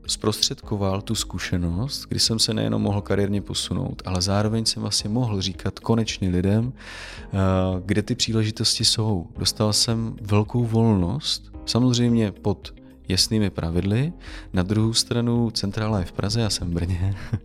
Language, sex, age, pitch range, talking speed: Czech, male, 30-49, 90-110 Hz, 140 wpm